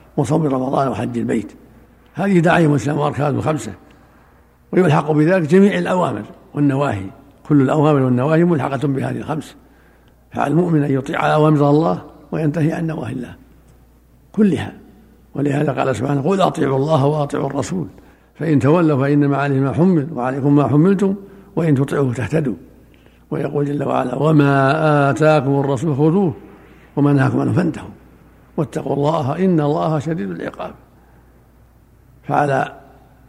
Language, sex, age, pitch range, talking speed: Arabic, male, 60-79, 135-160 Hz, 120 wpm